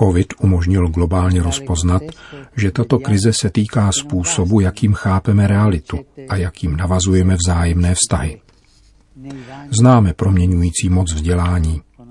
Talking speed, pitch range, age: 110 wpm, 85-100 Hz, 40-59